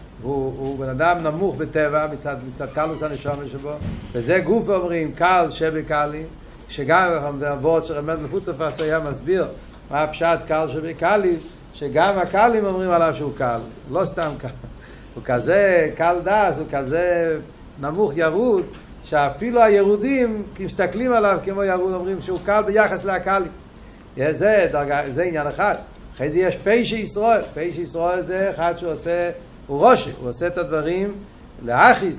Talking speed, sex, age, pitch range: 145 wpm, male, 60-79, 155-205 Hz